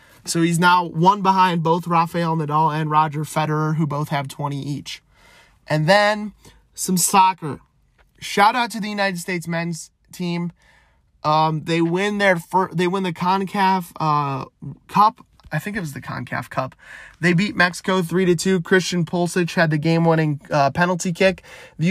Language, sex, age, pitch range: English, male, 20-39, 150-180 Hz